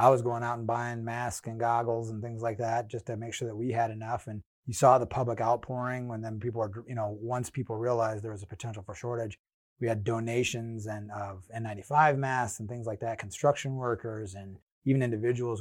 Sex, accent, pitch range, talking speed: male, American, 115-130 Hz, 225 wpm